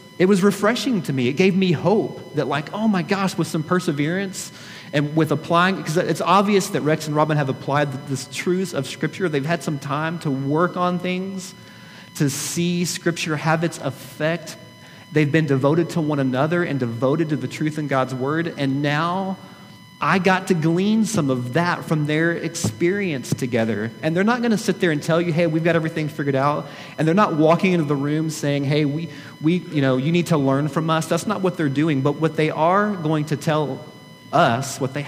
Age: 30-49